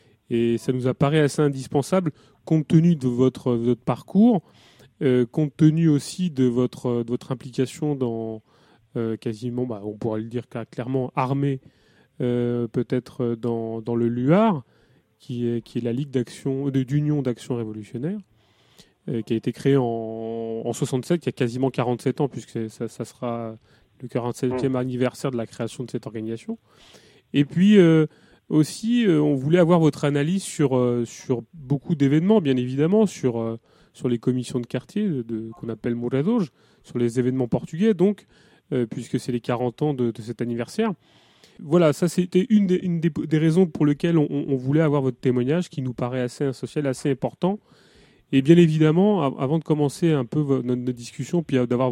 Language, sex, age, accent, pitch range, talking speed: French, male, 30-49, French, 120-155 Hz, 180 wpm